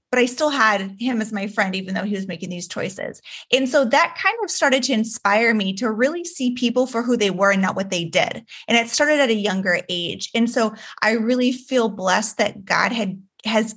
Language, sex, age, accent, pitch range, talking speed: English, female, 20-39, American, 205-260 Hz, 235 wpm